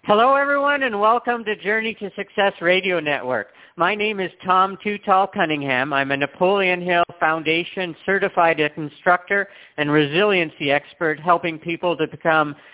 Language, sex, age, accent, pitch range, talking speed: English, male, 50-69, American, 130-165 Hz, 140 wpm